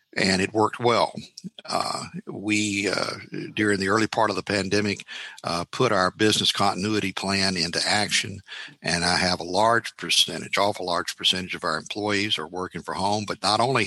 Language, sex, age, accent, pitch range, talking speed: English, male, 60-79, American, 95-110 Hz, 175 wpm